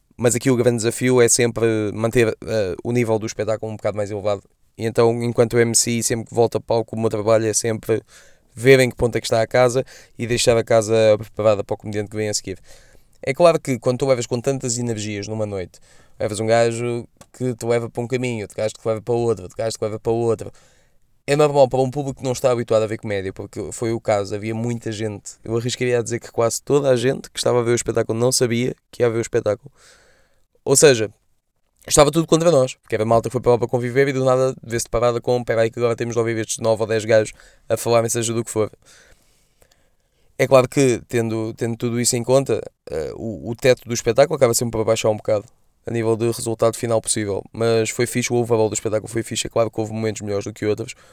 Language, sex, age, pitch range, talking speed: Portuguese, male, 20-39, 110-120 Hz, 245 wpm